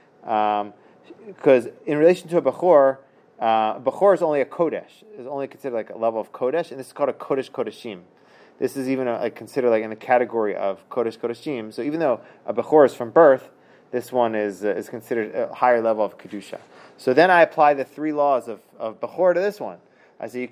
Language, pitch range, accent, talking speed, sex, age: English, 120-155 Hz, American, 220 wpm, male, 30-49